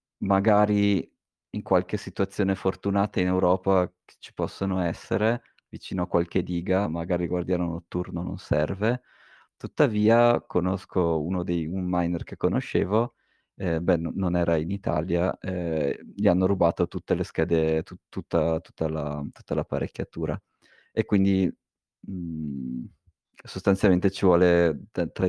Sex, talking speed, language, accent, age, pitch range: male, 115 wpm, Italian, native, 20-39, 90-100 Hz